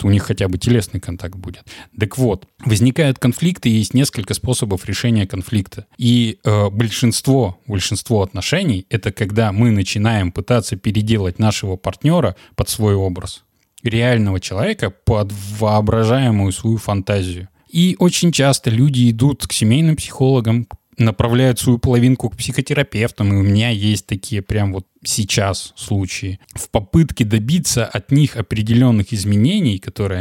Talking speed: 135 wpm